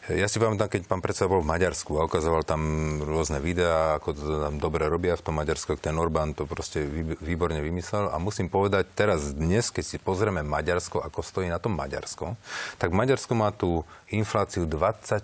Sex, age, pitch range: male, 40-59, 80-105 Hz